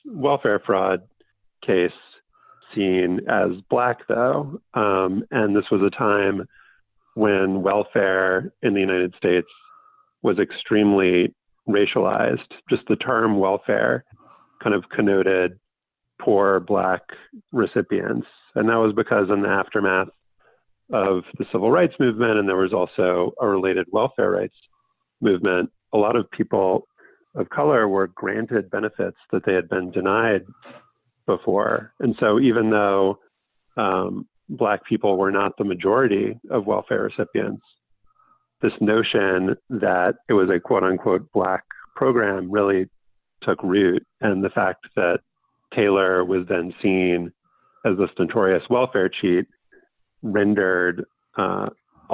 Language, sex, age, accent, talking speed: English, male, 40-59, American, 125 wpm